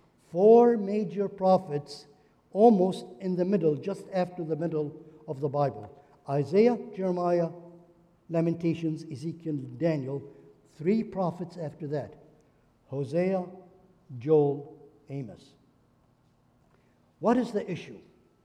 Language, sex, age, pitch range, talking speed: English, male, 60-79, 150-220 Hz, 100 wpm